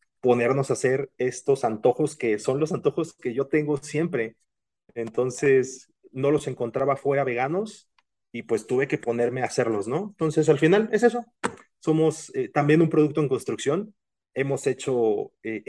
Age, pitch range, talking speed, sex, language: 30-49, 120-150 Hz, 160 wpm, male, Spanish